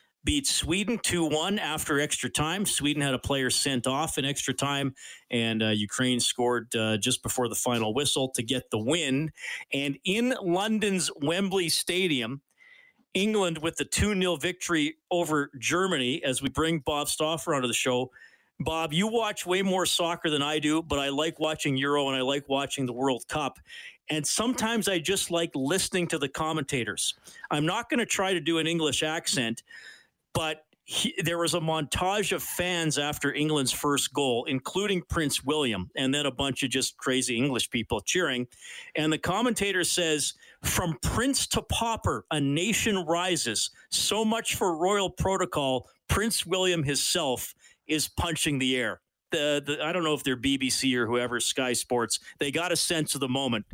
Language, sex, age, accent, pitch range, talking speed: English, male, 40-59, American, 130-175 Hz, 170 wpm